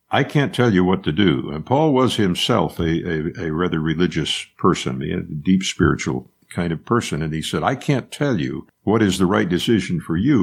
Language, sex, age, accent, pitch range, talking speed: English, male, 60-79, American, 80-100 Hz, 215 wpm